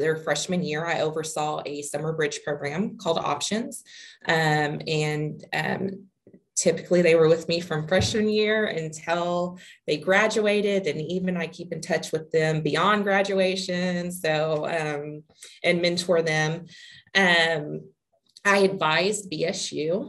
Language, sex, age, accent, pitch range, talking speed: English, female, 20-39, American, 155-195 Hz, 130 wpm